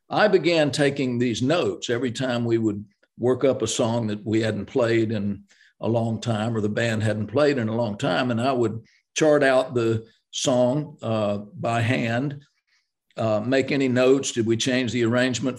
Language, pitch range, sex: English, 110-135 Hz, male